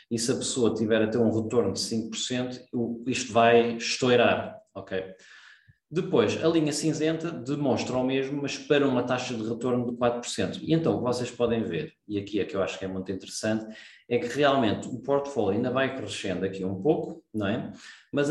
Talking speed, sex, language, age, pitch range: 200 wpm, male, Portuguese, 20-39, 105-125 Hz